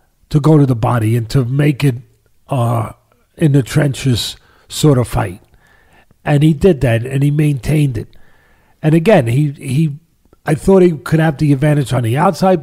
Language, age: English, 40-59